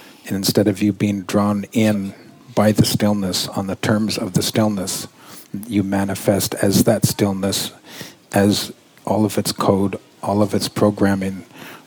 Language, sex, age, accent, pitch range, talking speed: English, male, 50-69, American, 100-115 Hz, 150 wpm